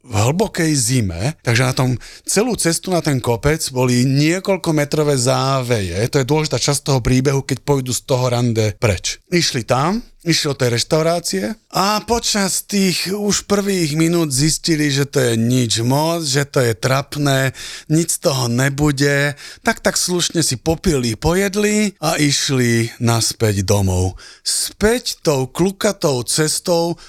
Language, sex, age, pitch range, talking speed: Slovak, male, 30-49, 130-175 Hz, 150 wpm